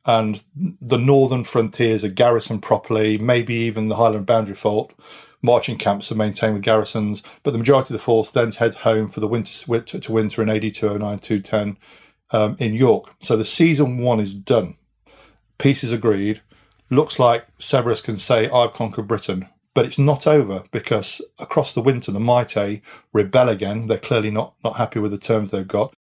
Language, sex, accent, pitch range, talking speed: English, male, British, 105-130 Hz, 175 wpm